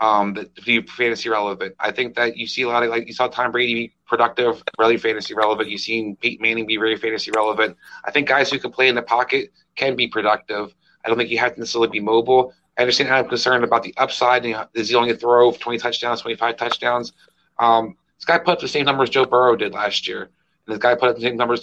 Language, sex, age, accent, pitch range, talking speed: English, male, 30-49, American, 115-130 Hz, 260 wpm